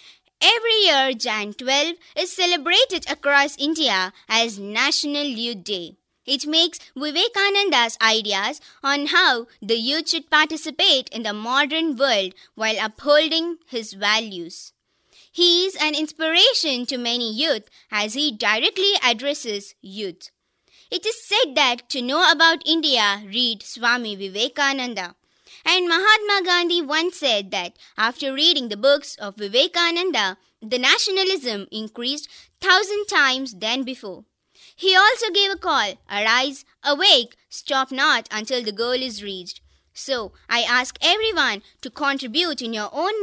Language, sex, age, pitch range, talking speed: Kannada, male, 20-39, 220-335 Hz, 130 wpm